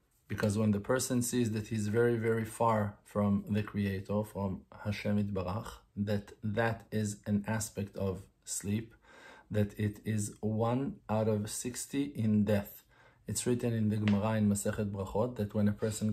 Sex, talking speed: male, 165 wpm